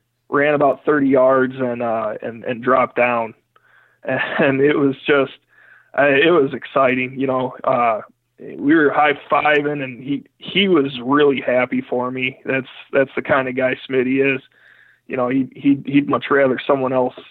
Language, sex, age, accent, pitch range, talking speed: English, male, 20-39, American, 130-150 Hz, 175 wpm